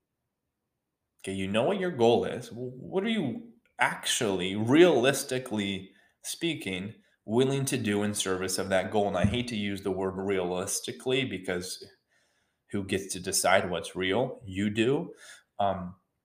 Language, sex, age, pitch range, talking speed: English, male, 20-39, 95-115 Hz, 145 wpm